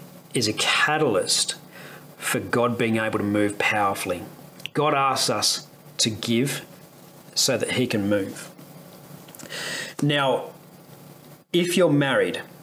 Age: 40-59